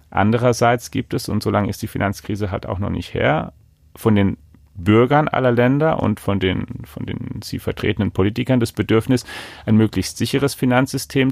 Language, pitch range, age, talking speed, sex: German, 100-125 Hz, 40-59, 170 wpm, male